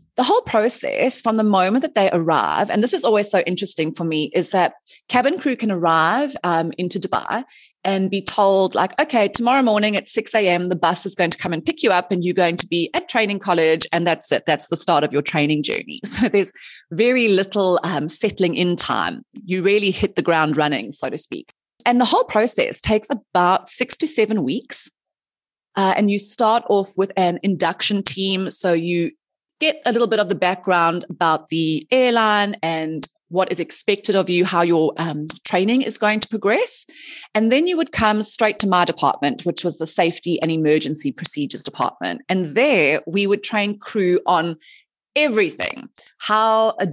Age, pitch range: 20-39, 170-220 Hz